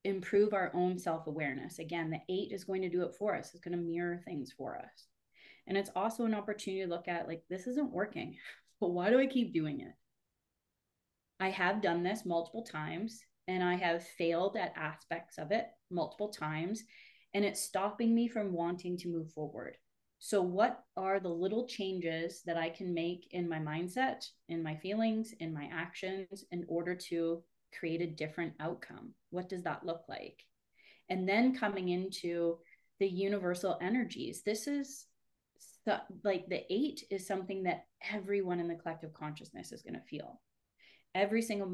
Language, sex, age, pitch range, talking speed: English, female, 20-39, 170-210 Hz, 175 wpm